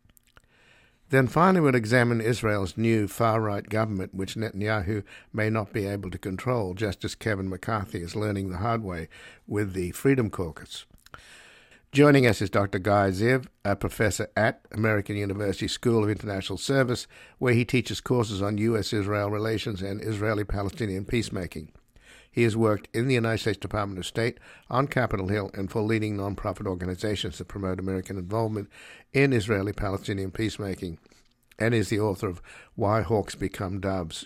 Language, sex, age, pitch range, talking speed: English, male, 60-79, 95-115 Hz, 155 wpm